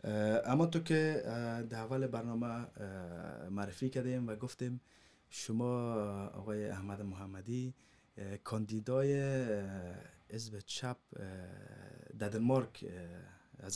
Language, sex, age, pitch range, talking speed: Persian, male, 20-39, 100-125 Hz, 85 wpm